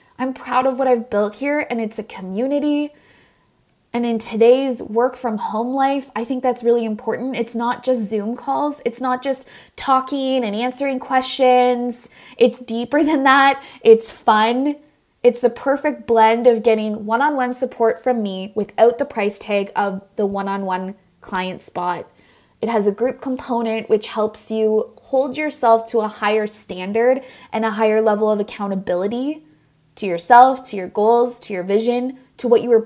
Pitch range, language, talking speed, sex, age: 210-250 Hz, English, 165 wpm, female, 20-39